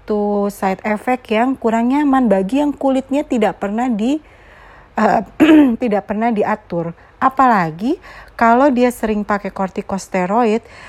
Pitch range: 185-250 Hz